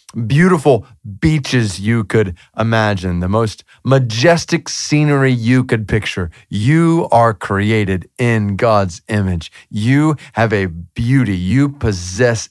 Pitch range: 95-130 Hz